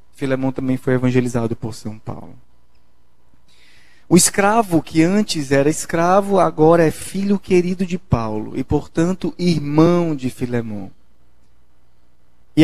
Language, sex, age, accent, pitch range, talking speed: Portuguese, male, 20-39, Brazilian, 125-175 Hz, 120 wpm